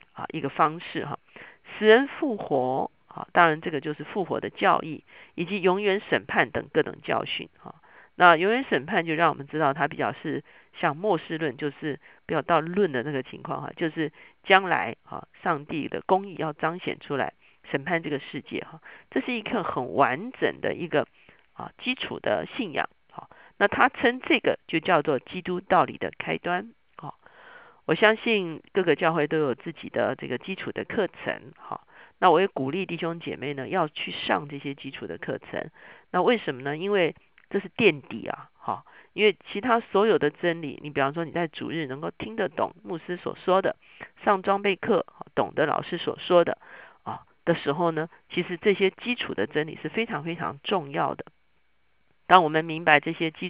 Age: 50-69